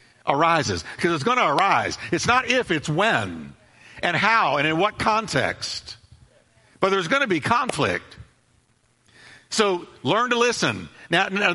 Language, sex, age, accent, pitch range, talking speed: English, male, 60-79, American, 135-200 Hz, 150 wpm